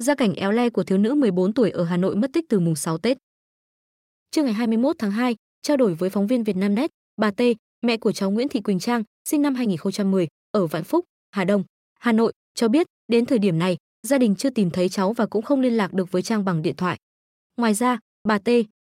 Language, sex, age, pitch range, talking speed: Vietnamese, female, 20-39, 195-245 Hz, 240 wpm